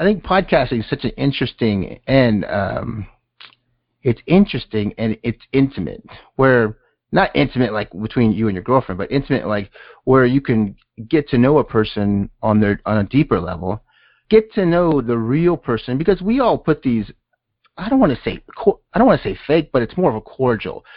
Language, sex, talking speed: English, male, 195 wpm